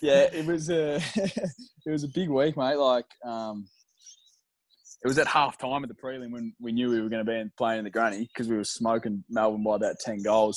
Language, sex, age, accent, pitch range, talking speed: English, male, 20-39, Australian, 105-125 Hz, 240 wpm